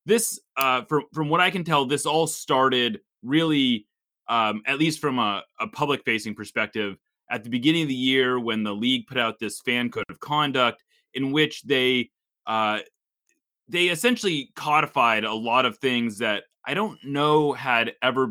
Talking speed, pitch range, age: 175 wpm, 120-160 Hz, 30-49